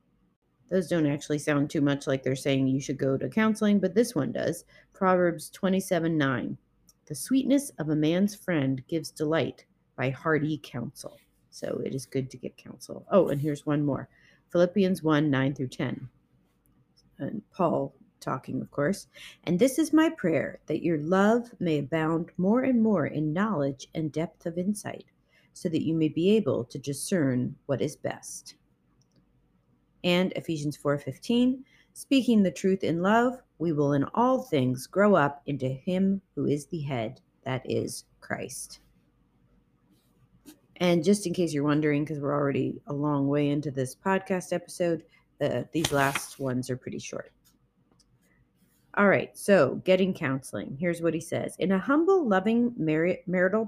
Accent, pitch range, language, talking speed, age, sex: American, 135-190 Hz, English, 160 wpm, 40-59, female